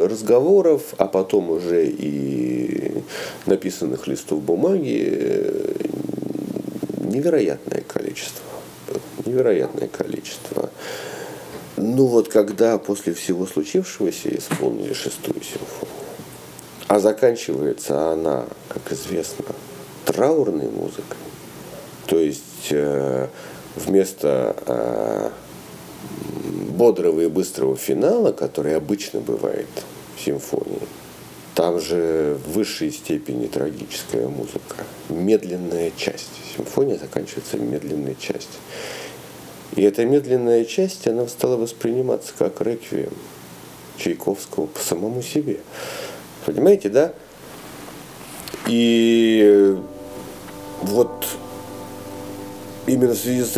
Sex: male